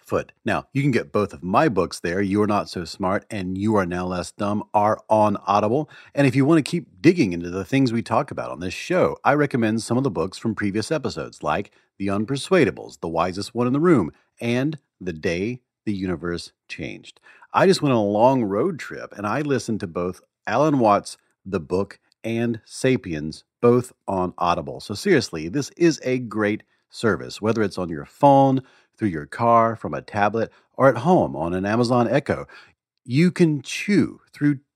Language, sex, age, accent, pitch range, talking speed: English, male, 40-59, American, 100-135 Hz, 195 wpm